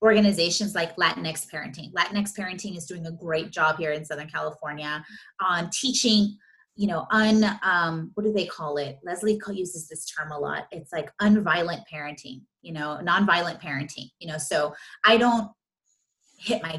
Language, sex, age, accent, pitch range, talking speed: English, female, 30-49, American, 160-200 Hz, 170 wpm